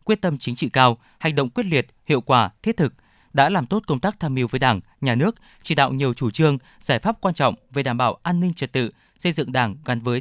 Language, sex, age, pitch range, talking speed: Vietnamese, male, 20-39, 125-170 Hz, 265 wpm